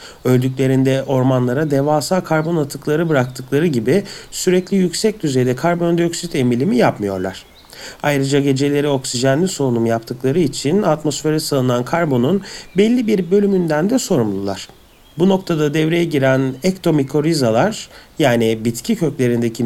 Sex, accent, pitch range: male, native, 120-175 Hz